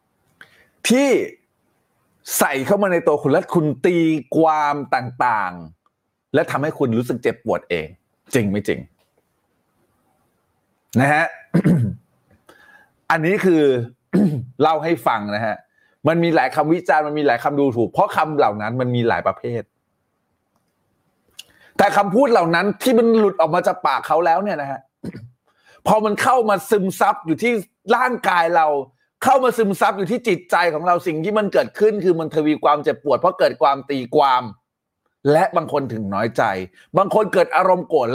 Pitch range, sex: 130-205 Hz, male